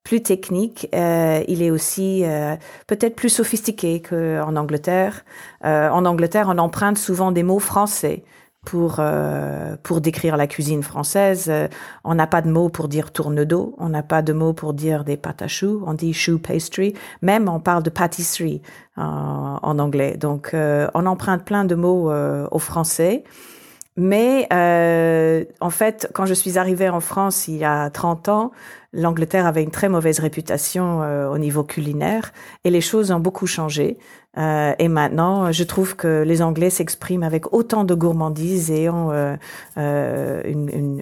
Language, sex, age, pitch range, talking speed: French, female, 50-69, 150-185 Hz, 180 wpm